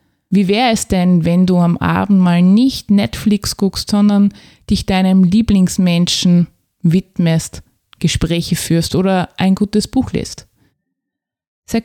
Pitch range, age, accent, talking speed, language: 155-190 Hz, 20-39, Austrian, 125 wpm, German